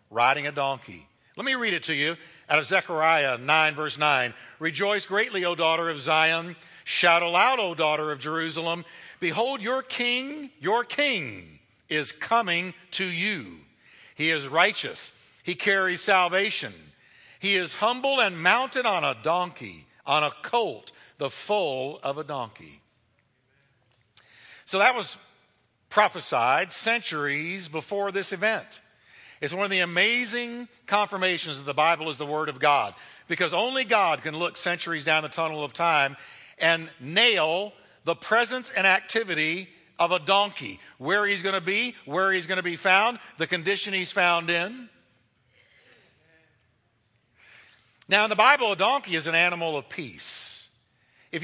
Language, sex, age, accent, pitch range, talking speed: English, male, 60-79, American, 150-200 Hz, 150 wpm